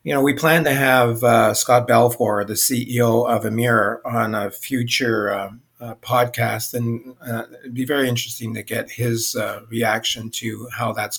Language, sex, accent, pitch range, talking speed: English, male, American, 115-125 Hz, 175 wpm